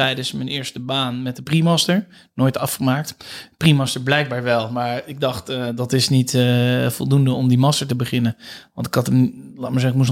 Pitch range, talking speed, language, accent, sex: 125-155 Hz, 210 wpm, Dutch, Dutch, male